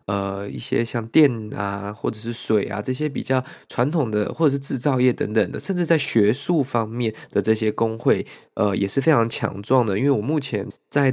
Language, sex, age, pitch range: Chinese, male, 20-39, 105-130 Hz